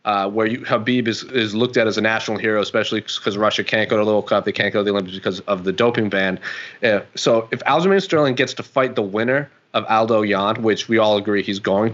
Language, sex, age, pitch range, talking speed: English, male, 30-49, 110-145 Hz, 240 wpm